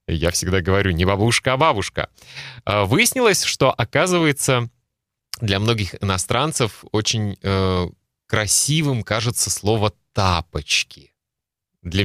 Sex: male